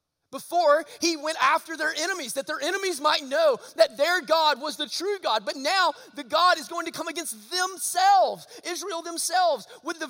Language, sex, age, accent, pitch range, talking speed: English, male, 30-49, American, 205-295 Hz, 190 wpm